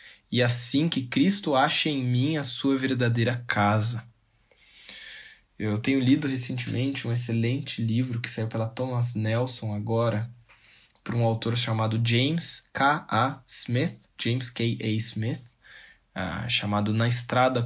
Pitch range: 110-120 Hz